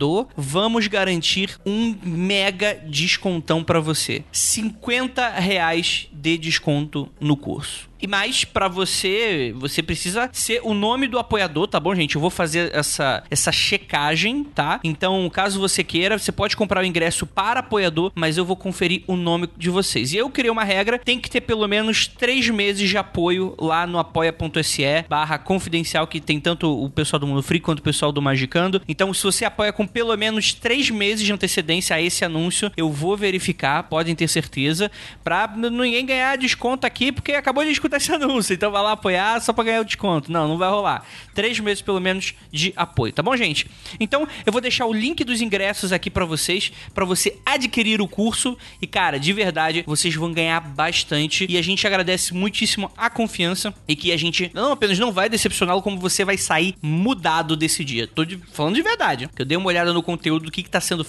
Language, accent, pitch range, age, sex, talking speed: Portuguese, Brazilian, 165-220 Hz, 20-39, male, 200 wpm